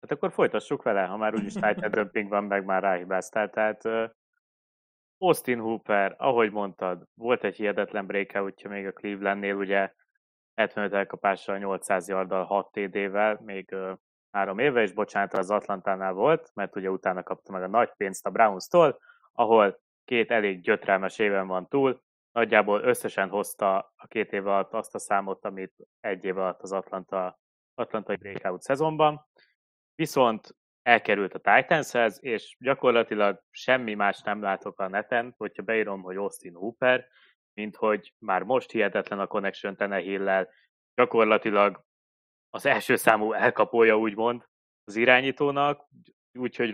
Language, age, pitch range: Hungarian, 20-39, 100-115 Hz